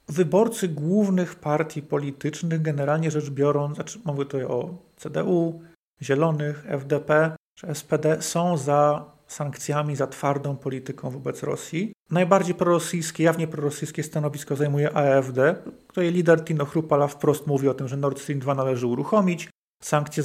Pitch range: 145-170 Hz